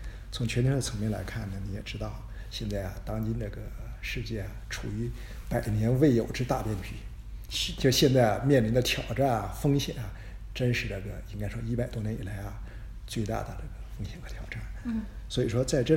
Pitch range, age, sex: 105-125 Hz, 50-69, male